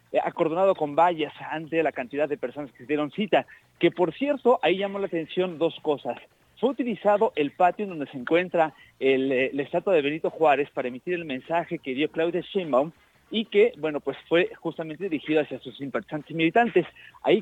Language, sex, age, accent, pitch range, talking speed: Spanish, male, 40-59, Mexican, 135-175 Hz, 190 wpm